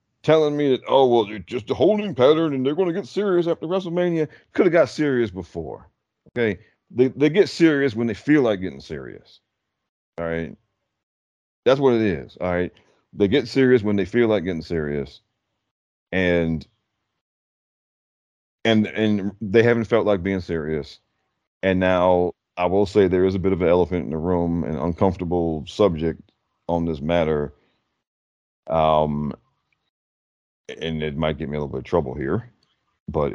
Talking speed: 170 wpm